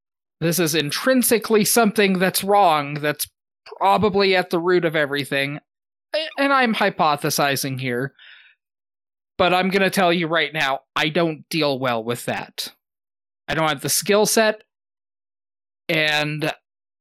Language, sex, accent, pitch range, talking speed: English, male, American, 135-170 Hz, 135 wpm